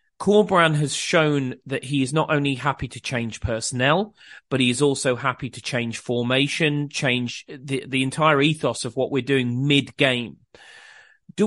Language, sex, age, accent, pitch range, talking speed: English, male, 30-49, British, 130-160 Hz, 165 wpm